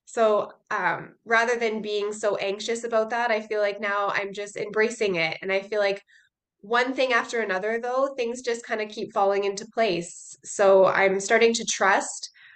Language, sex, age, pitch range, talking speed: English, female, 20-39, 195-230 Hz, 185 wpm